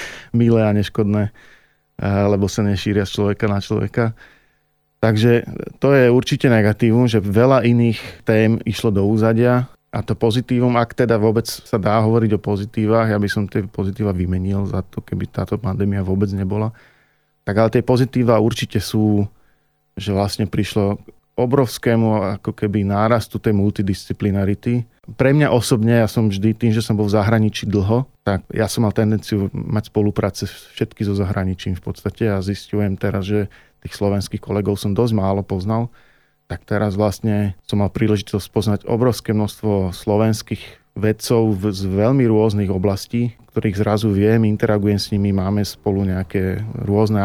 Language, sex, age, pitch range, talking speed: Slovak, male, 40-59, 100-115 Hz, 160 wpm